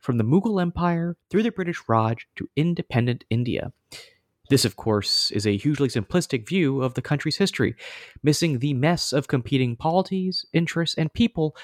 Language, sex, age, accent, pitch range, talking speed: English, male, 30-49, American, 120-180 Hz, 165 wpm